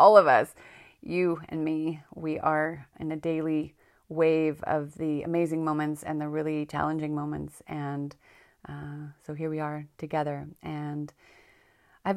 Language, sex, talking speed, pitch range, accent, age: English, female, 150 wpm, 150-165 Hz, American, 30-49